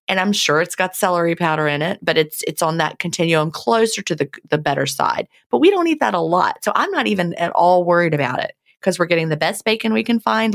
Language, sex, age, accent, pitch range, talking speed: English, female, 30-49, American, 150-195 Hz, 260 wpm